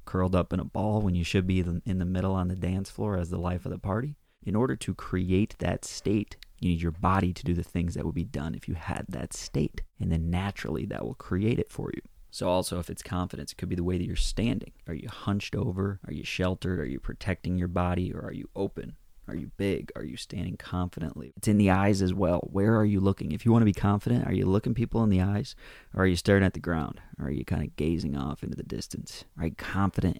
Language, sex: English, male